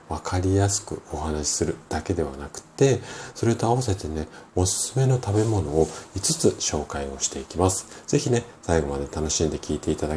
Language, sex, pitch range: Japanese, male, 80-115 Hz